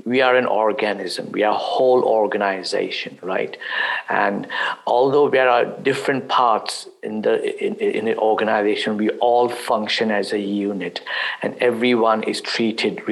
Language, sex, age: English, male, 50-69